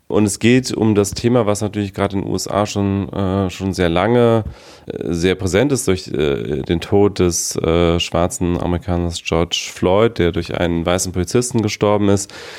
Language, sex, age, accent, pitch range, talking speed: German, male, 30-49, German, 90-110 Hz, 175 wpm